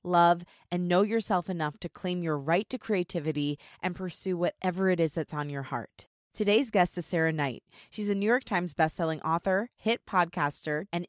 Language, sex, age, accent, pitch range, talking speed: English, female, 20-39, American, 160-210 Hz, 190 wpm